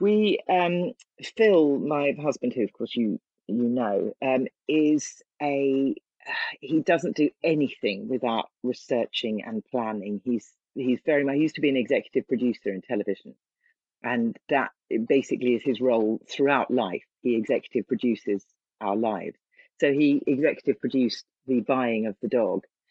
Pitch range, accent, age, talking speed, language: 115-150 Hz, British, 40-59, 150 wpm, English